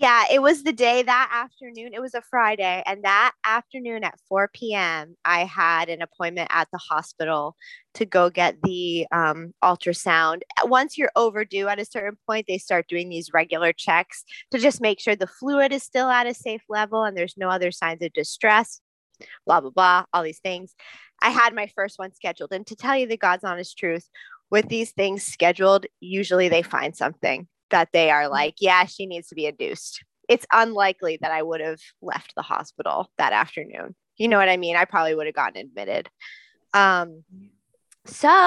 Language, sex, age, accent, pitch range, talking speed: English, female, 20-39, American, 175-225 Hz, 195 wpm